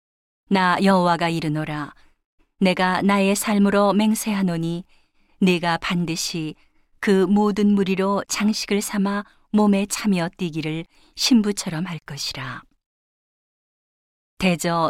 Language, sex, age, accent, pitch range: Korean, female, 40-59, native, 165-200 Hz